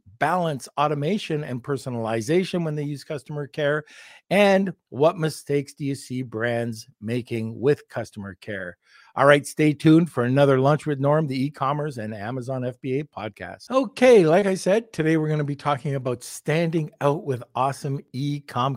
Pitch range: 120-155 Hz